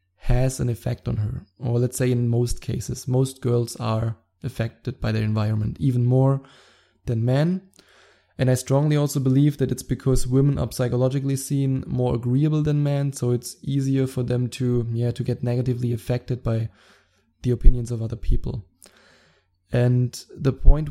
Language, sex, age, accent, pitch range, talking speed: English, male, 20-39, German, 115-130 Hz, 165 wpm